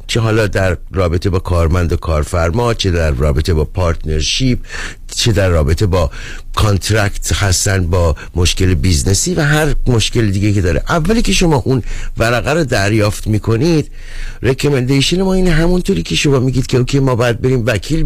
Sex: male